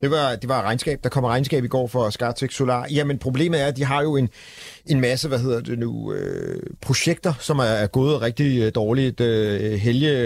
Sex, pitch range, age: male, 115-130 Hz, 40-59